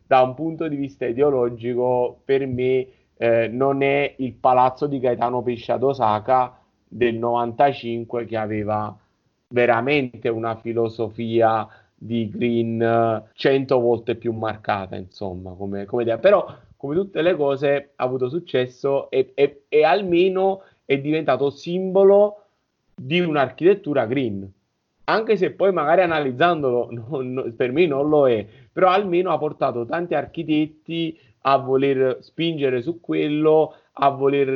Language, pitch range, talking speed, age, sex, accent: Italian, 120-155 Hz, 130 wpm, 30-49, male, native